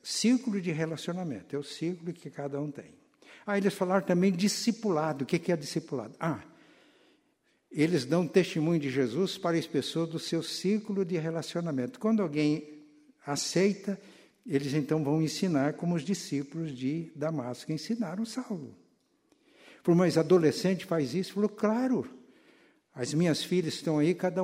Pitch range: 150-195 Hz